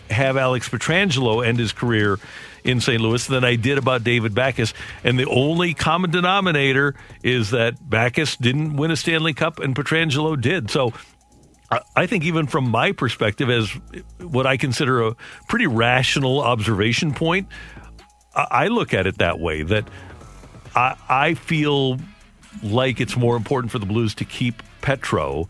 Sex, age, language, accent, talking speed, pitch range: male, 50-69, English, American, 160 wpm, 105-140 Hz